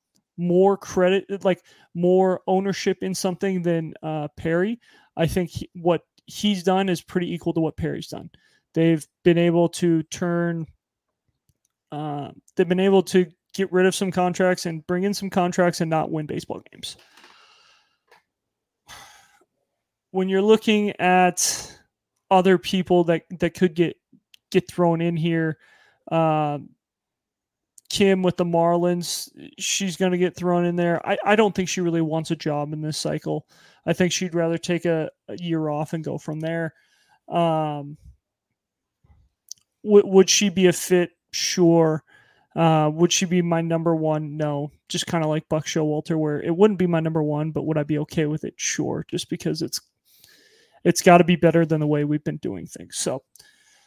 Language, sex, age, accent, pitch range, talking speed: English, male, 20-39, American, 160-185 Hz, 170 wpm